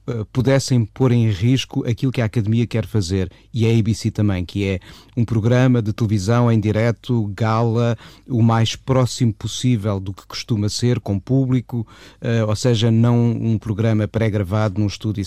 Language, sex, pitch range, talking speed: Portuguese, male, 105-130 Hz, 160 wpm